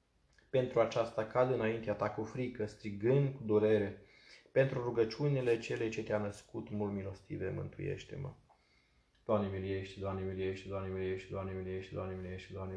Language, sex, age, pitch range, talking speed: Romanian, male, 20-39, 95-110 Hz, 155 wpm